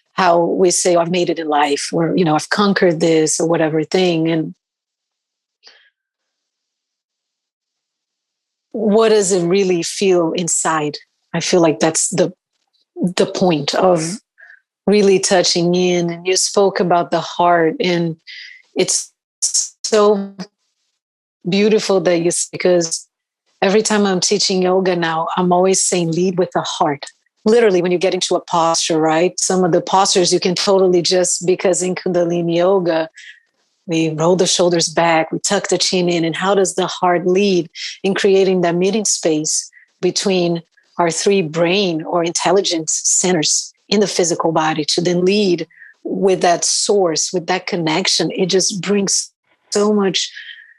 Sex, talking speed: female, 150 wpm